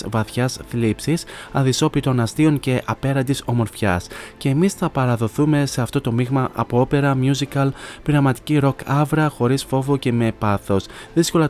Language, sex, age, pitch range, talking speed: Greek, male, 20-39, 110-135 Hz, 140 wpm